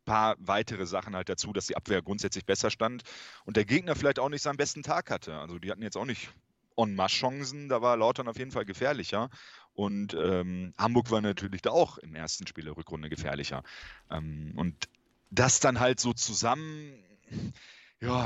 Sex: male